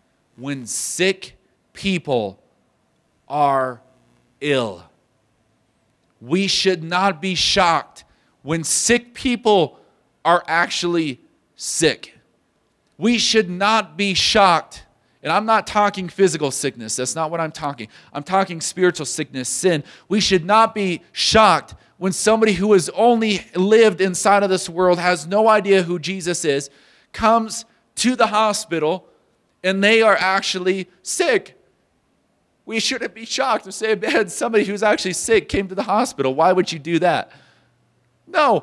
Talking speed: 135 wpm